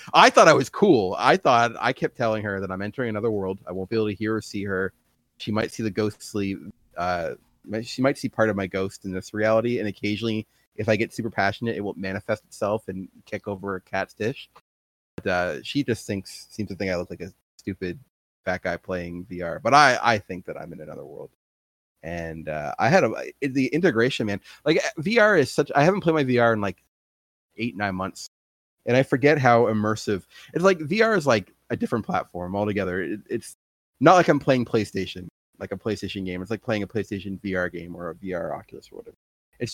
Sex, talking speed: male, 220 wpm